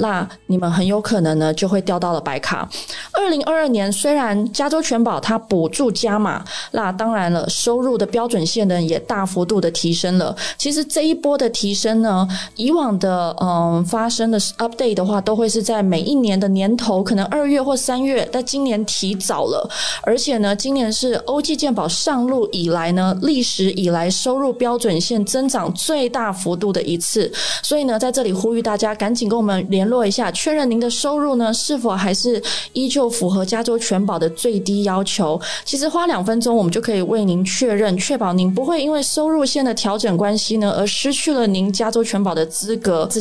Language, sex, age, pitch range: Chinese, female, 20-39, 190-250 Hz